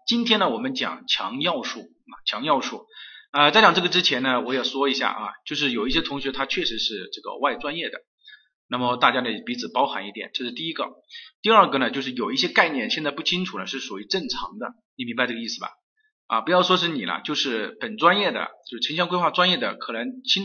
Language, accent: Chinese, native